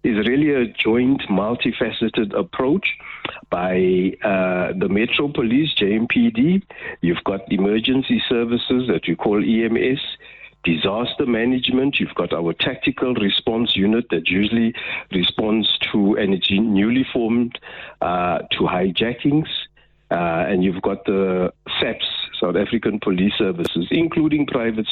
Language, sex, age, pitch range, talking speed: English, male, 60-79, 95-130 Hz, 120 wpm